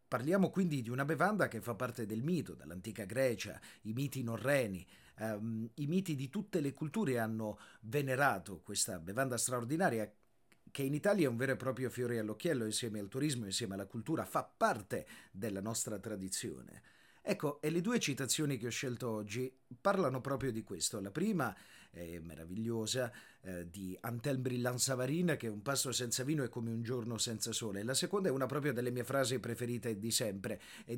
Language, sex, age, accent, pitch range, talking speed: Italian, male, 40-59, native, 115-145 Hz, 180 wpm